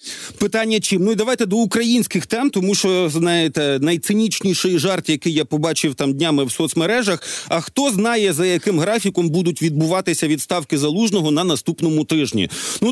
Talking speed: 155 wpm